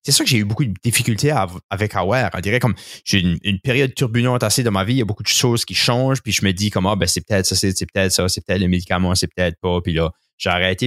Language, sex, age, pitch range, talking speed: French, male, 20-39, 95-130 Hz, 315 wpm